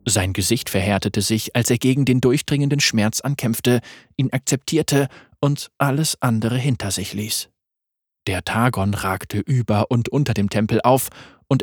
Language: German